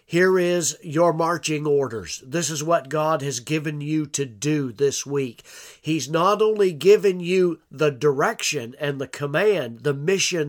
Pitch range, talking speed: 140-170 Hz, 160 wpm